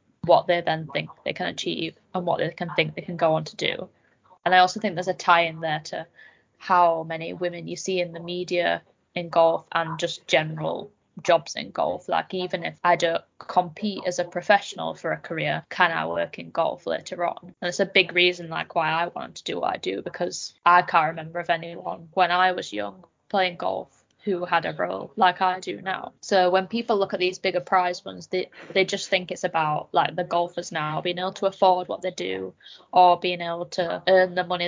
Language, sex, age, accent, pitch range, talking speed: English, female, 10-29, British, 170-185 Hz, 225 wpm